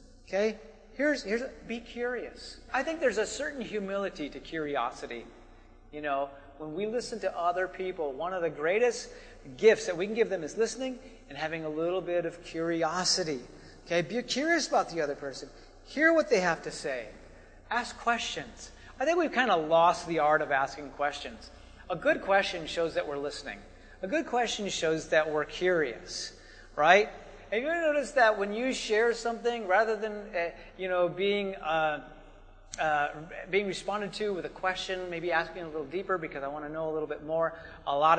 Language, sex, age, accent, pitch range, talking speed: English, male, 40-59, American, 150-210 Hz, 190 wpm